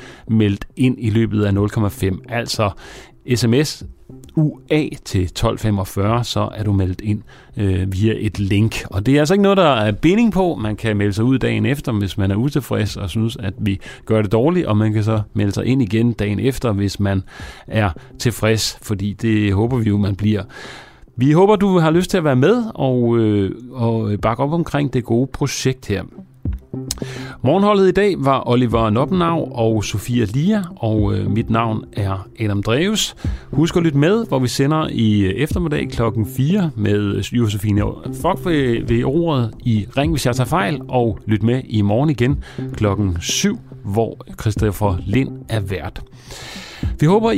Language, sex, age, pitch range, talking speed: Danish, male, 40-59, 105-140 Hz, 175 wpm